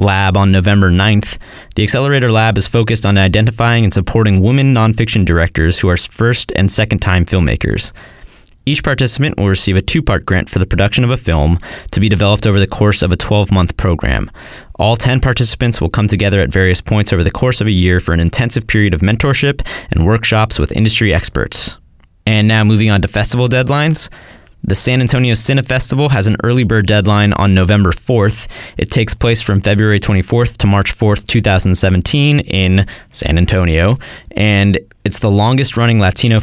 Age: 20-39